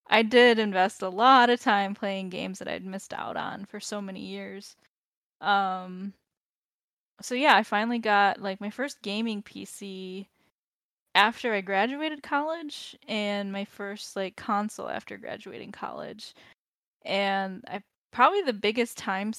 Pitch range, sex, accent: 190-220 Hz, female, American